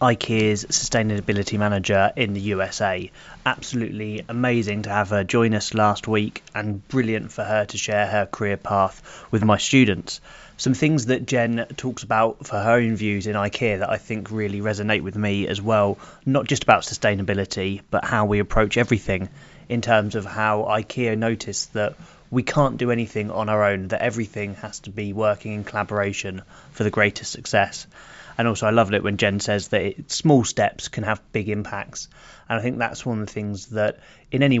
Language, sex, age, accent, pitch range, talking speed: English, male, 20-39, British, 105-125 Hz, 190 wpm